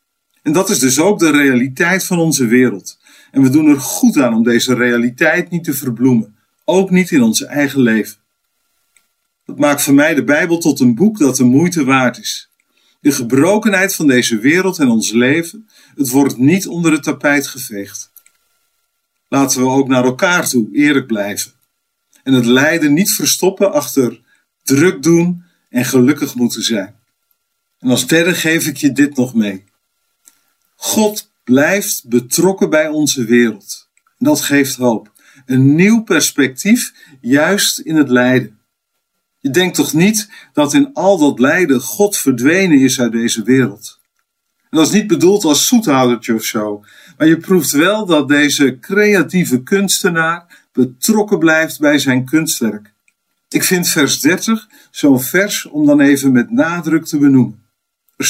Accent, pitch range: Dutch, 125-190 Hz